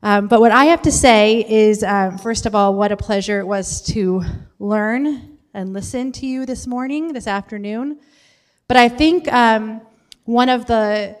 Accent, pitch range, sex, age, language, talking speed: American, 205-240 Hz, female, 30-49, English, 180 wpm